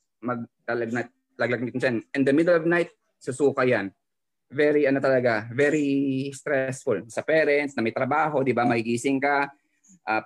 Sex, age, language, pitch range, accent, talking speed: male, 20-39, English, 130-155 Hz, Filipino, 165 wpm